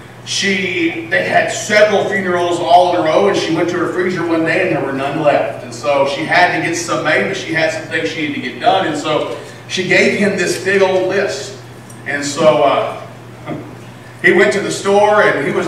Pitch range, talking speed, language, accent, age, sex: 175-240 Hz, 230 wpm, English, American, 40-59, male